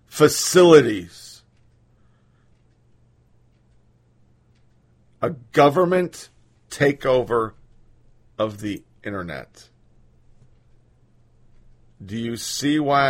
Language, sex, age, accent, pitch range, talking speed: English, male, 40-59, American, 120-185 Hz, 50 wpm